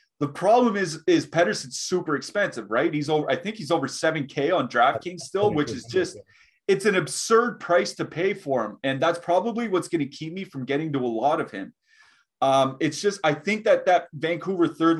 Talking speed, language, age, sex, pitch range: 210 wpm, English, 30-49, male, 125-165 Hz